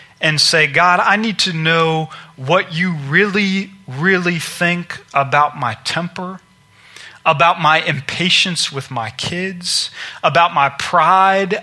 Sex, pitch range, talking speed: male, 135-180 Hz, 125 wpm